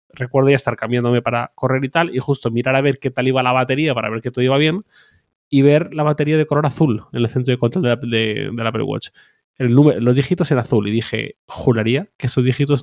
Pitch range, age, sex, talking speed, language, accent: 115-140 Hz, 20-39, male, 255 wpm, Spanish, Spanish